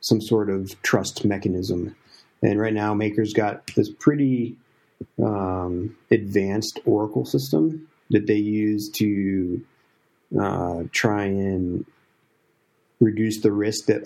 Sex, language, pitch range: male, English, 100-115 Hz